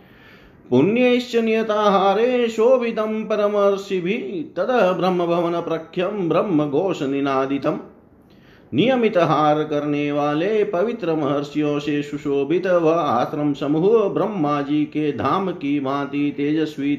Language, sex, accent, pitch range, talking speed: Hindi, male, native, 145-200 Hz, 75 wpm